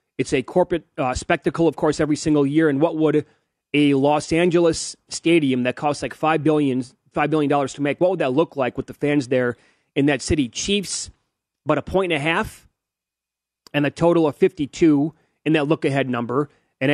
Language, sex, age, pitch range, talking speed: English, male, 30-49, 135-160 Hz, 195 wpm